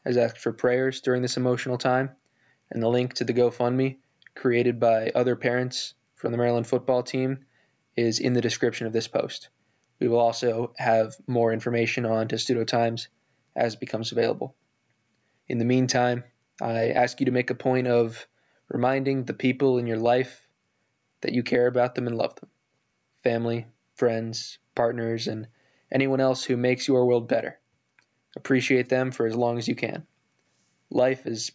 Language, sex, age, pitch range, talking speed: English, male, 20-39, 115-125 Hz, 170 wpm